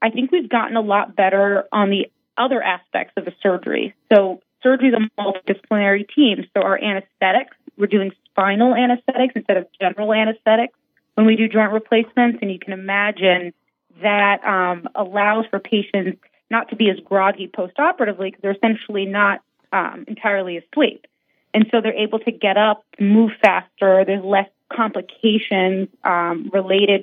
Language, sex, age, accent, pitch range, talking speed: English, female, 30-49, American, 190-225 Hz, 160 wpm